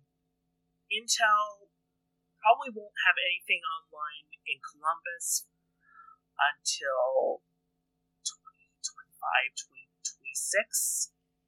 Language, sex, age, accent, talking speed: English, male, 30-49, American, 60 wpm